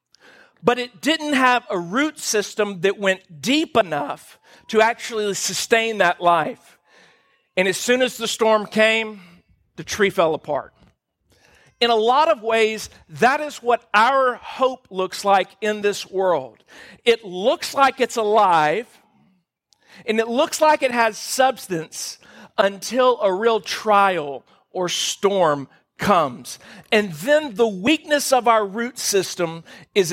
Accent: American